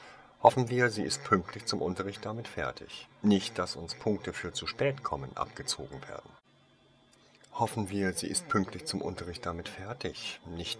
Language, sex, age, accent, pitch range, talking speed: German, male, 50-69, German, 85-115 Hz, 160 wpm